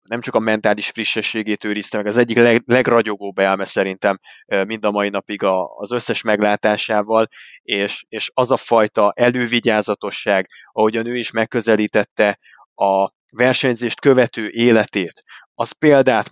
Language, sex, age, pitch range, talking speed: Hungarian, male, 20-39, 105-120 Hz, 130 wpm